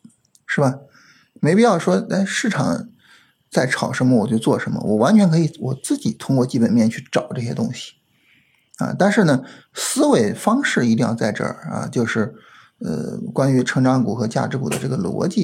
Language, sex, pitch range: Chinese, male, 130-195 Hz